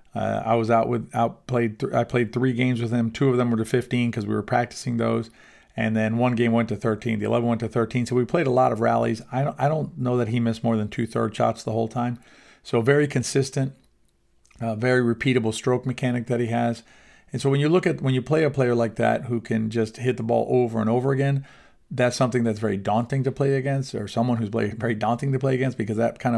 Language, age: English, 40-59